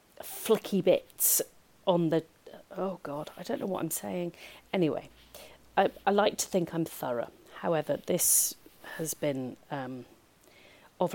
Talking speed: 140 wpm